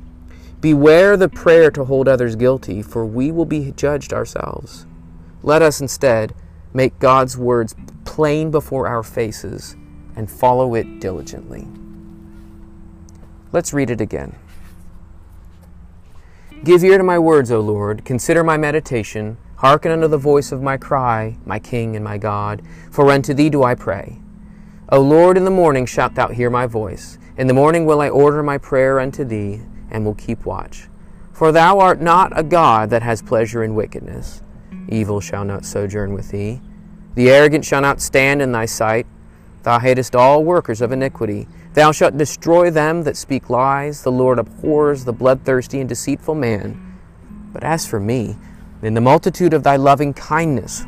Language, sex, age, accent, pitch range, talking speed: English, male, 30-49, American, 105-145 Hz, 165 wpm